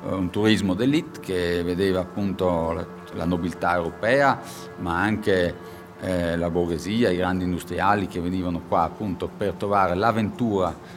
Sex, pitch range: male, 90-130 Hz